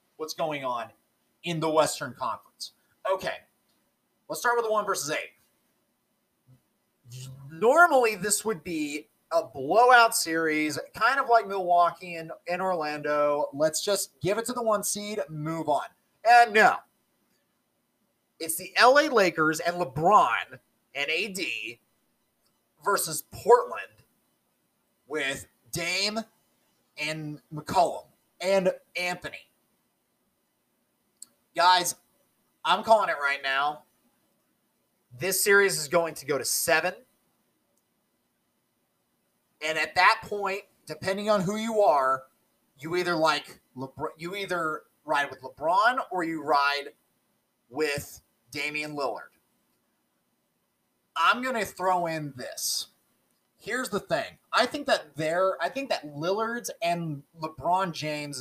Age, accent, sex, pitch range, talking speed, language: 30-49, American, male, 150-205 Hz, 120 wpm, English